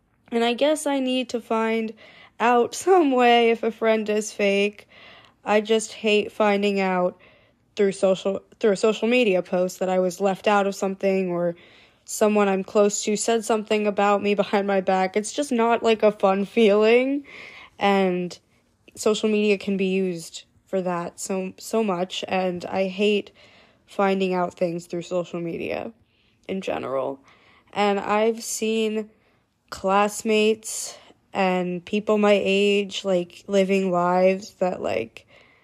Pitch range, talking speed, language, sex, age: 180-220 Hz, 150 wpm, English, female, 20-39